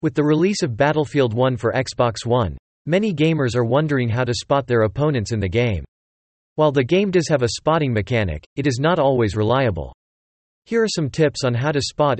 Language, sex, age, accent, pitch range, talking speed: English, male, 40-59, American, 110-150 Hz, 205 wpm